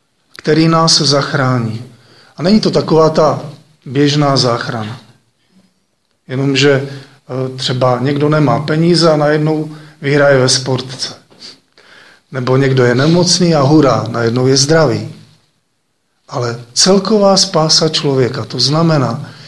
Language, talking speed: Slovak, 110 wpm